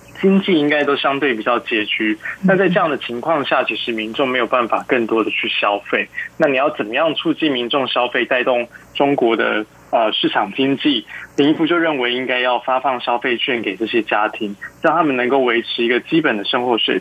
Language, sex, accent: Chinese, male, native